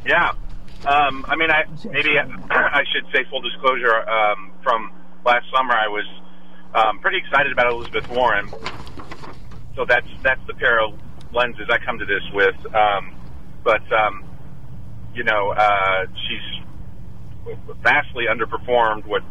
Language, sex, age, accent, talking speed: English, male, 40-59, American, 140 wpm